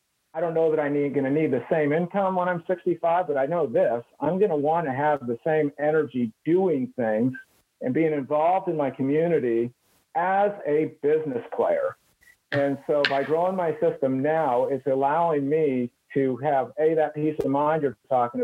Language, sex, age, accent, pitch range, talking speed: English, male, 50-69, American, 130-160 Hz, 190 wpm